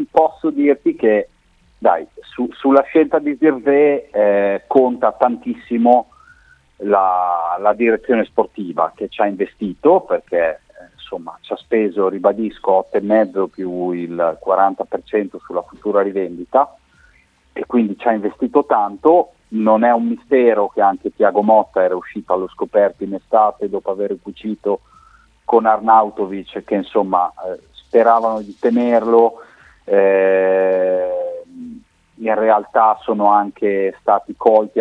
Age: 40-59